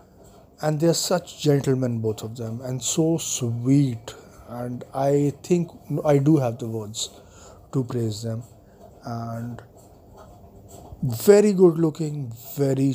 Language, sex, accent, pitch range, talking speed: English, male, Indian, 115-145 Hz, 120 wpm